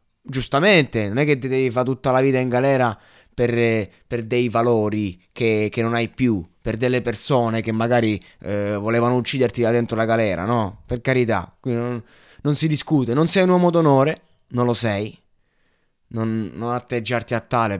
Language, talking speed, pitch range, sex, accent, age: Italian, 175 wpm, 115-160 Hz, male, native, 20-39